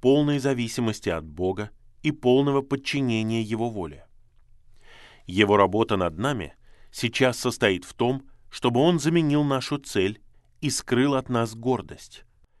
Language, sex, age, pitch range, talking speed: Russian, male, 20-39, 105-130 Hz, 130 wpm